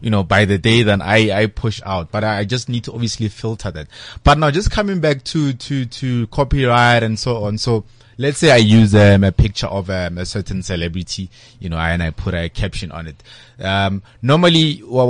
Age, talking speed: 30-49, 220 wpm